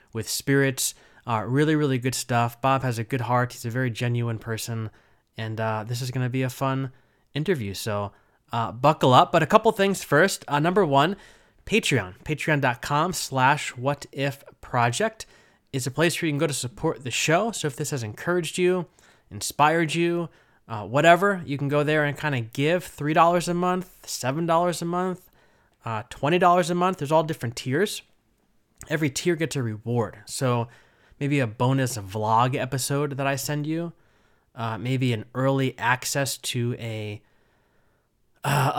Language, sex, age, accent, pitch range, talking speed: English, male, 20-39, American, 120-160 Hz, 170 wpm